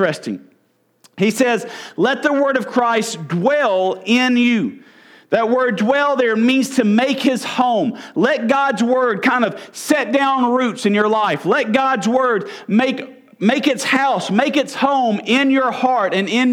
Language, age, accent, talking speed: English, 40-59, American, 165 wpm